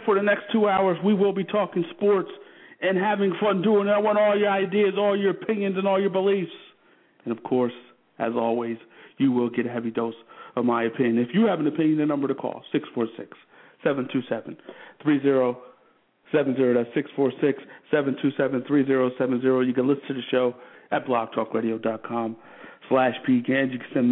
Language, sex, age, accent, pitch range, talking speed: English, male, 50-69, American, 125-165 Hz, 155 wpm